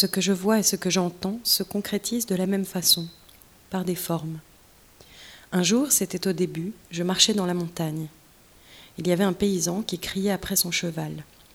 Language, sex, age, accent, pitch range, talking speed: French, female, 30-49, French, 170-195 Hz, 190 wpm